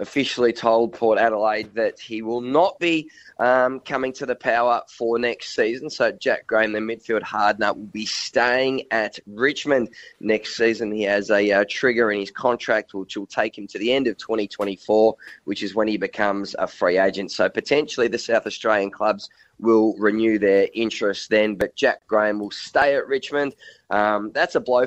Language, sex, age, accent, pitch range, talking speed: English, male, 20-39, Australian, 105-130 Hz, 185 wpm